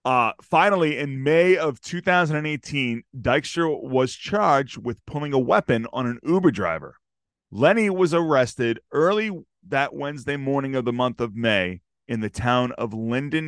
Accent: American